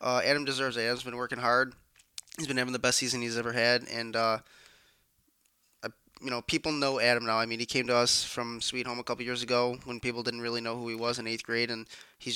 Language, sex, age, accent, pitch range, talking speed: English, male, 20-39, American, 120-135 Hz, 250 wpm